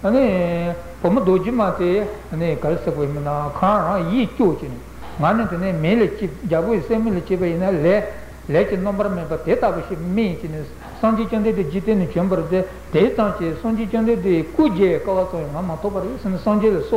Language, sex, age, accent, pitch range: Italian, male, 60-79, Indian, 165-220 Hz